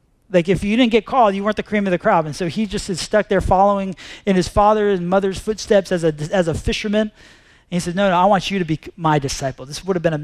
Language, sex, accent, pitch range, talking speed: English, male, American, 160-210 Hz, 280 wpm